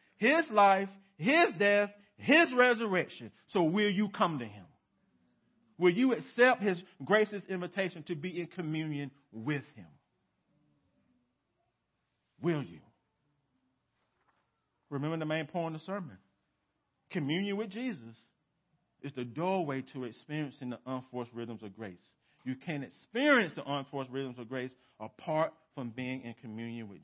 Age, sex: 40-59, male